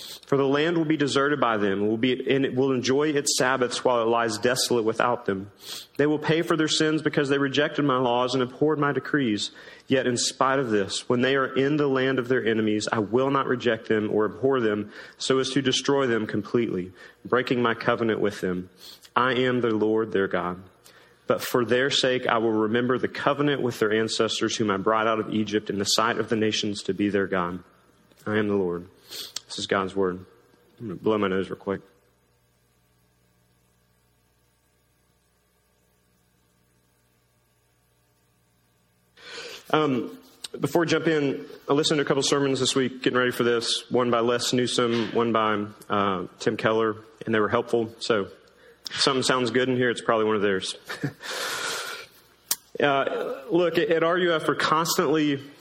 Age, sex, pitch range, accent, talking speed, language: 40-59, male, 100-135 Hz, American, 180 wpm, English